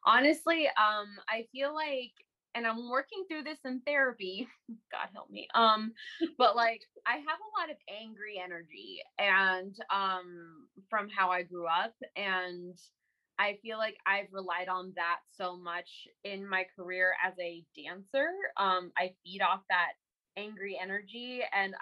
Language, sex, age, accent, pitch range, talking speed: English, female, 20-39, American, 175-210 Hz, 155 wpm